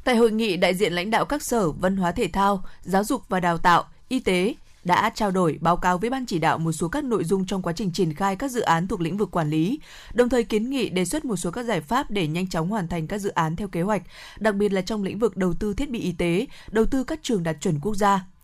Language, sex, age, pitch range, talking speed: Vietnamese, female, 20-39, 175-225 Hz, 290 wpm